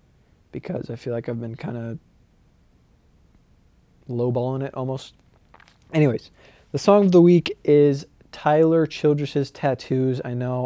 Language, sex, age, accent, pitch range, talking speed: English, male, 20-39, American, 120-140 Hz, 130 wpm